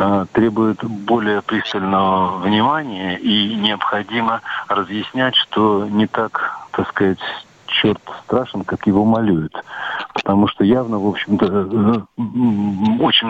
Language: Russian